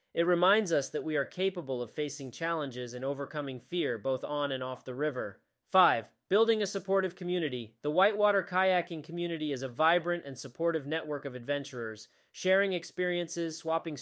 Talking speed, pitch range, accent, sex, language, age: 165 wpm, 135-170 Hz, American, male, English, 30-49